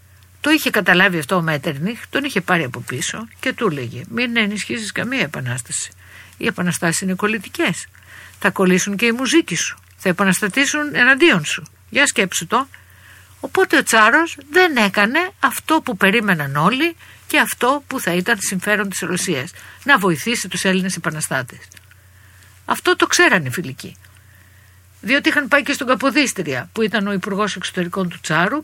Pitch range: 155-245 Hz